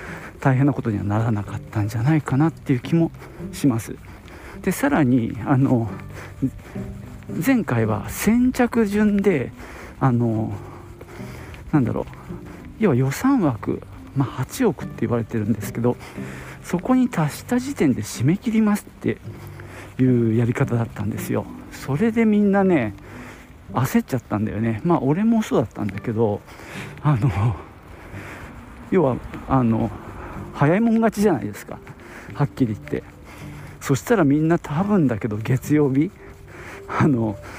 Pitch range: 110-155 Hz